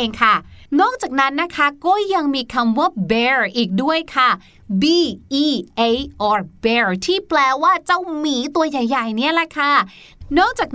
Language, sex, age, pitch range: Thai, female, 20-39, 230-330 Hz